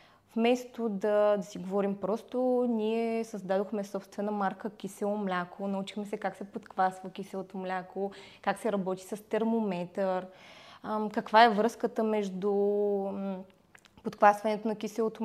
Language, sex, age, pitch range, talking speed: Bulgarian, female, 20-39, 190-220 Hz, 120 wpm